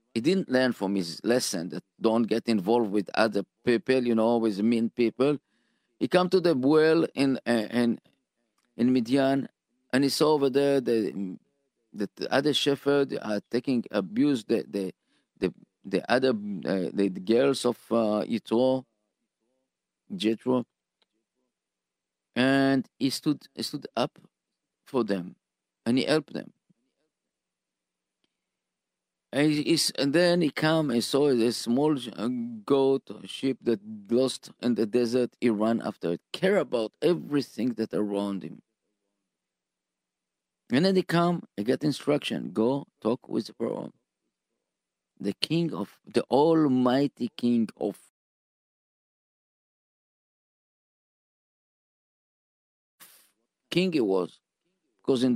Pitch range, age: 110-140 Hz, 50-69